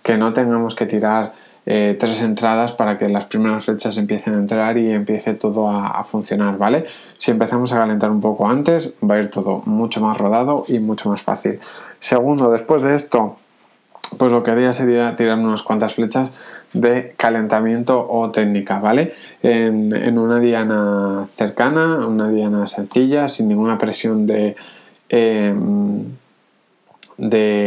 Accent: Spanish